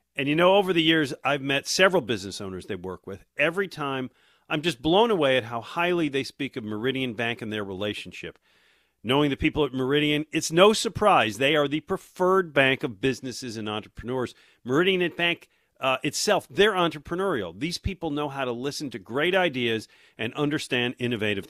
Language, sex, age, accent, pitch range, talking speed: English, male, 50-69, American, 120-160 Hz, 185 wpm